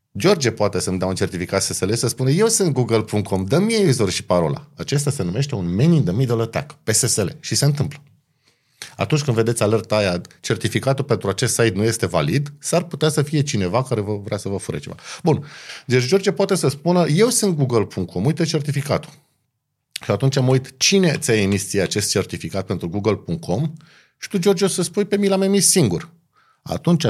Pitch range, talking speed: 110-150 Hz, 185 wpm